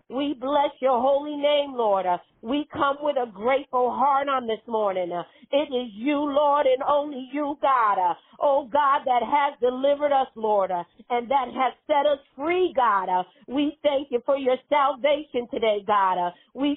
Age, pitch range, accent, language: 40-59, 245-290 Hz, American, English